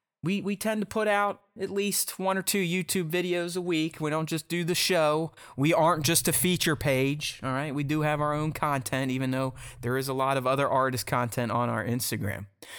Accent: American